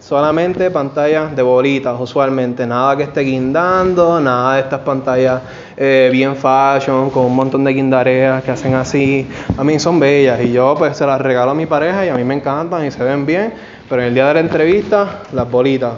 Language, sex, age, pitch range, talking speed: Spanish, male, 20-39, 130-165 Hz, 205 wpm